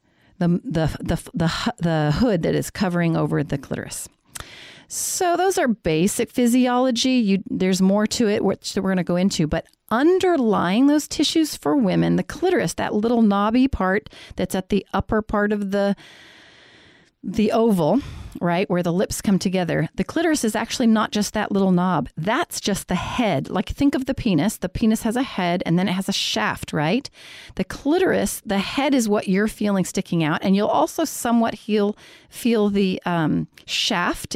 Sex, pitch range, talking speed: female, 180-235 Hz, 180 wpm